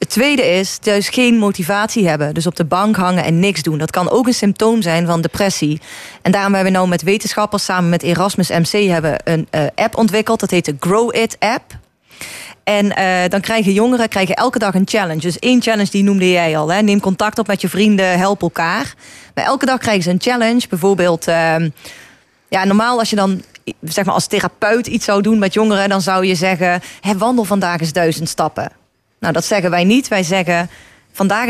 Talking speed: 215 wpm